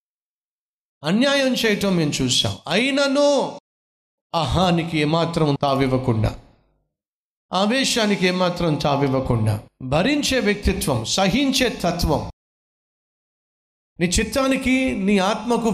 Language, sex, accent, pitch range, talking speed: Telugu, male, native, 145-210 Hz, 70 wpm